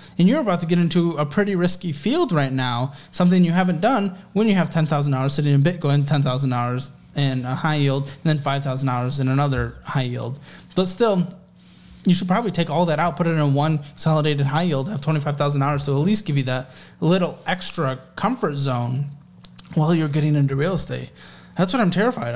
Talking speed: 195 wpm